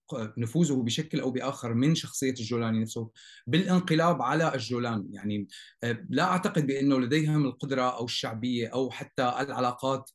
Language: Arabic